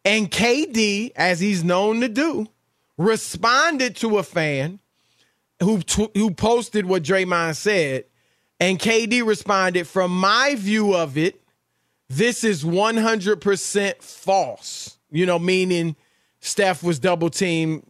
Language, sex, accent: English, male, American